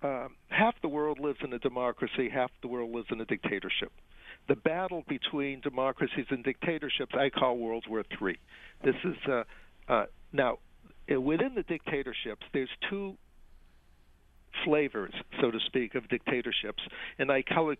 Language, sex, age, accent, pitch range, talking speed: English, male, 60-79, American, 115-140 Hz, 155 wpm